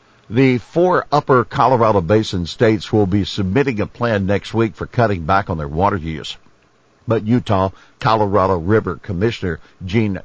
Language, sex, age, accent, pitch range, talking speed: English, male, 60-79, American, 90-110 Hz, 150 wpm